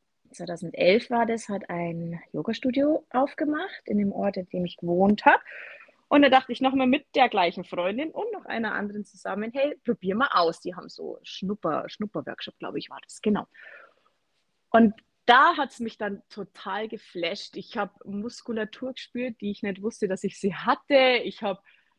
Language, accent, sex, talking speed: German, German, female, 175 wpm